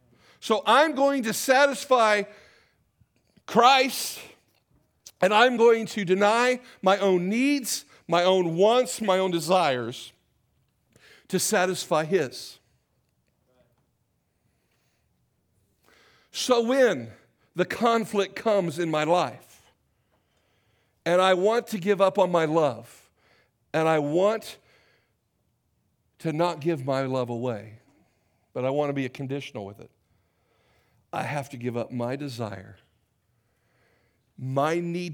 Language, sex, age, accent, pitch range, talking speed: English, male, 50-69, American, 120-180 Hz, 115 wpm